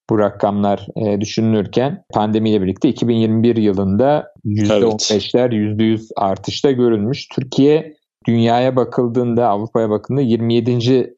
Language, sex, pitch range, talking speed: Turkish, male, 105-125 Hz, 90 wpm